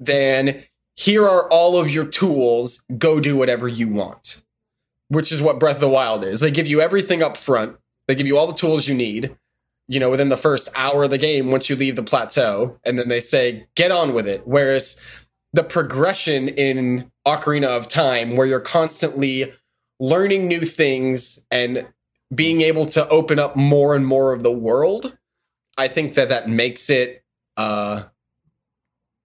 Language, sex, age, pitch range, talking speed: English, male, 20-39, 125-160 Hz, 180 wpm